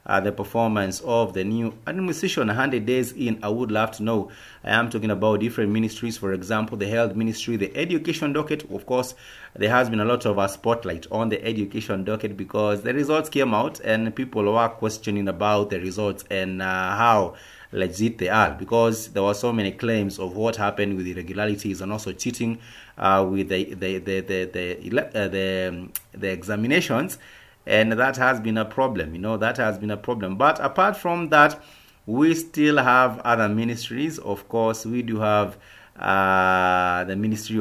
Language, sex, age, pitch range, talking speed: English, male, 30-49, 100-115 Hz, 190 wpm